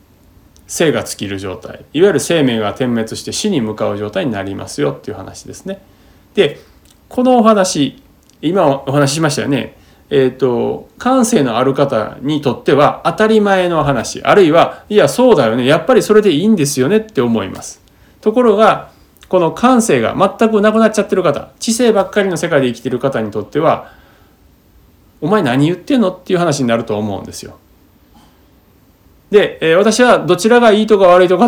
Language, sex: Japanese, male